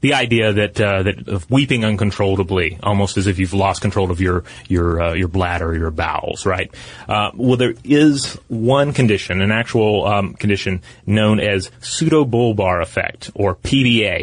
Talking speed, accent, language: 170 wpm, American, English